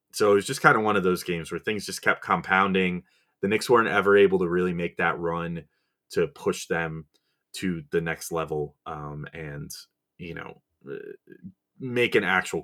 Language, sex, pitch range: English, male, 90-140 Hz